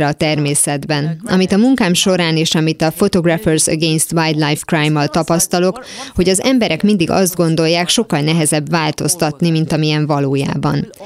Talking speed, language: 145 wpm, Hungarian